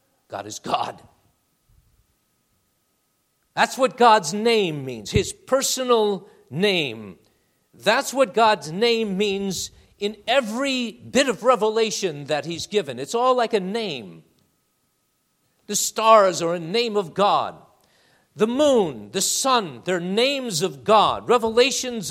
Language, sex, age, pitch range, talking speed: English, male, 50-69, 155-215 Hz, 120 wpm